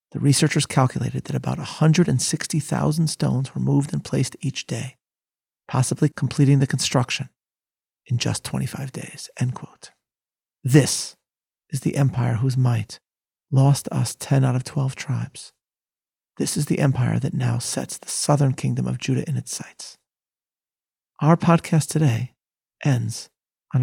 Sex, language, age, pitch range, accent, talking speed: male, English, 40-59, 130-150 Hz, American, 140 wpm